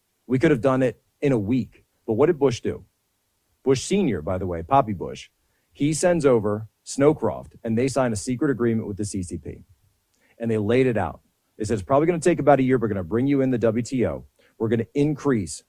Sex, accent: male, American